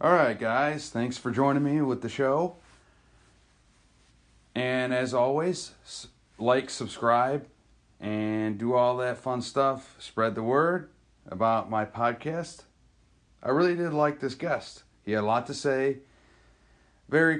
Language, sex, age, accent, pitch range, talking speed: English, male, 40-59, American, 110-140 Hz, 140 wpm